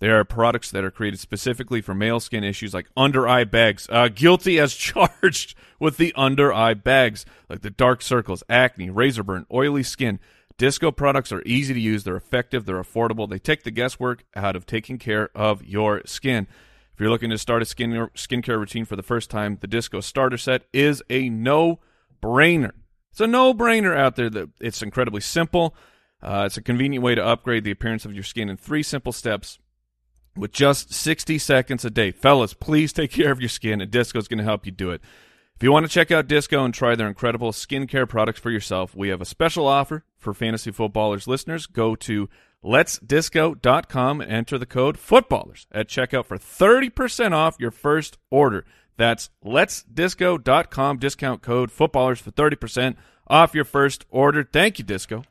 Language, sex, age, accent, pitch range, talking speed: English, male, 30-49, American, 105-140 Hz, 185 wpm